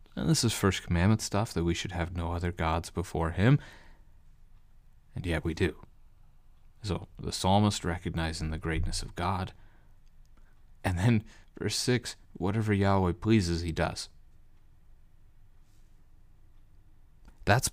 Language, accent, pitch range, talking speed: English, American, 85-105 Hz, 125 wpm